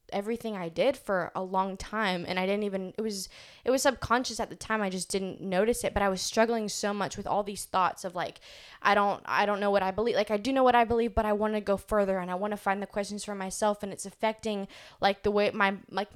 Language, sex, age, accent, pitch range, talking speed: English, female, 10-29, American, 190-225 Hz, 275 wpm